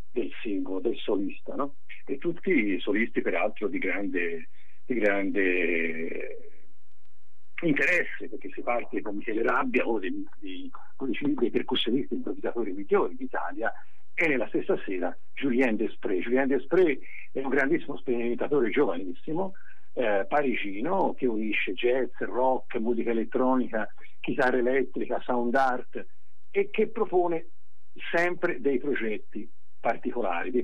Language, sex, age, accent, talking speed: Italian, male, 50-69, native, 120 wpm